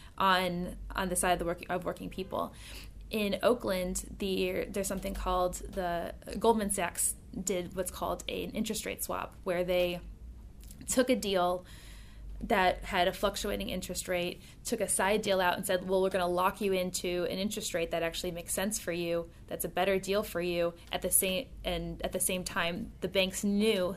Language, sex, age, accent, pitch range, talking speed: English, female, 10-29, American, 170-190 Hz, 195 wpm